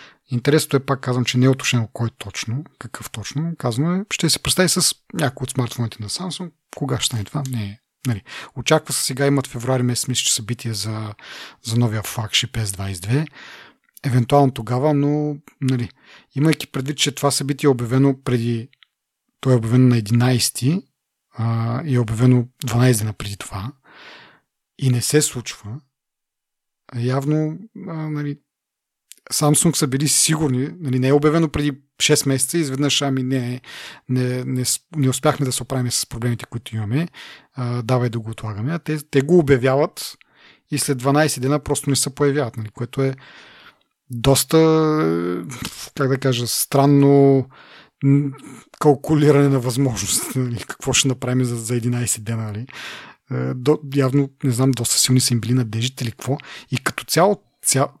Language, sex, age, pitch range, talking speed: Bulgarian, male, 40-59, 120-145 Hz, 160 wpm